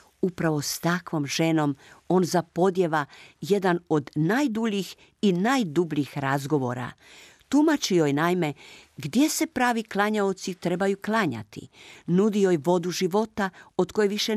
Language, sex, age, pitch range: Croatian, female, 50-69, 150-205 Hz